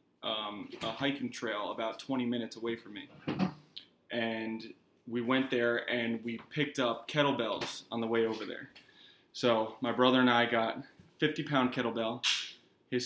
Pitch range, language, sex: 115-130 Hz, English, male